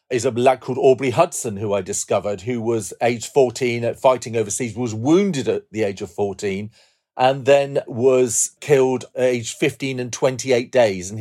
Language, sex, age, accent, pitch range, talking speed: English, male, 40-59, British, 105-130 Hz, 180 wpm